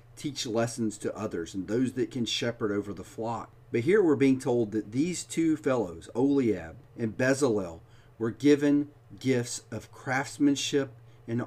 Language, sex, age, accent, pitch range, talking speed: English, male, 40-59, American, 110-140 Hz, 155 wpm